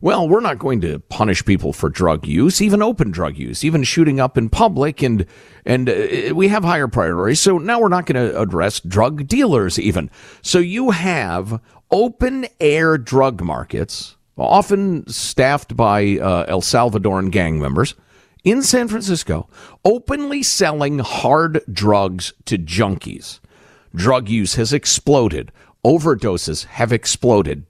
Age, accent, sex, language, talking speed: 50-69, American, male, English, 145 wpm